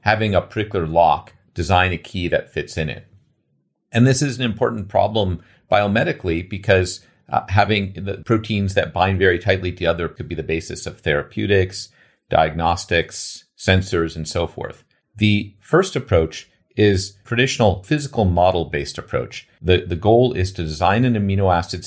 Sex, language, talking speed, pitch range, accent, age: male, English, 155 wpm, 85-105 Hz, American, 40-59